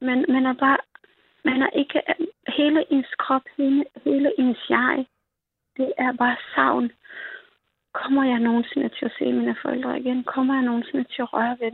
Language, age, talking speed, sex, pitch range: Danish, 30-49, 175 wpm, female, 230-270 Hz